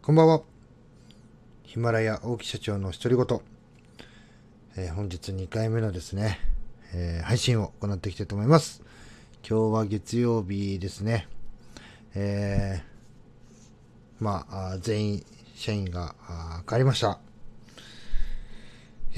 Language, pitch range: Japanese, 95-115 Hz